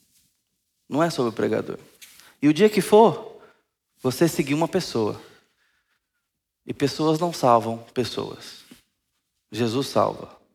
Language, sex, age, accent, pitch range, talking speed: Portuguese, male, 20-39, Brazilian, 115-160 Hz, 120 wpm